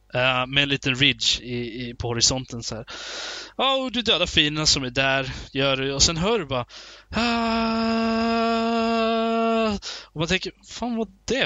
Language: Swedish